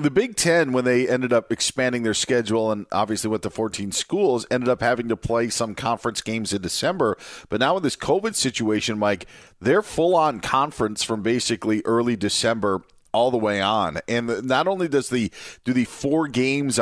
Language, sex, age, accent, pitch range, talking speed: English, male, 40-59, American, 105-125 Hz, 190 wpm